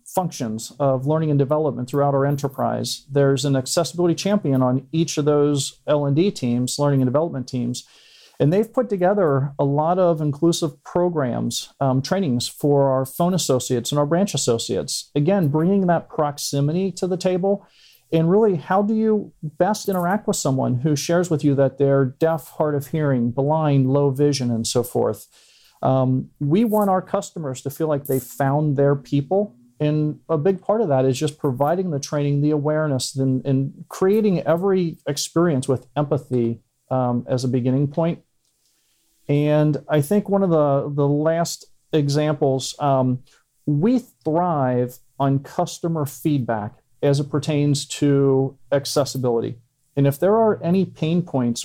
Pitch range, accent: 135-165 Hz, American